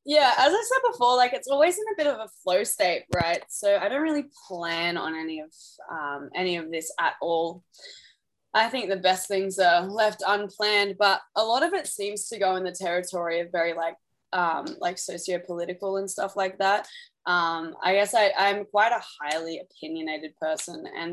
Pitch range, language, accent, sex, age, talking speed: 170-225 Hz, English, Australian, female, 20-39, 200 wpm